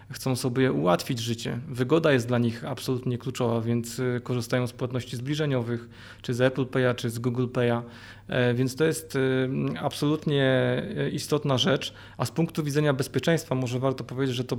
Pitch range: 120-145 Hz